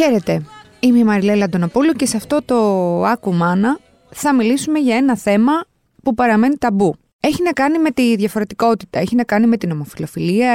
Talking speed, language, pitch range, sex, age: 170 wpm, Greek, 200-265 Hz, female, 20-39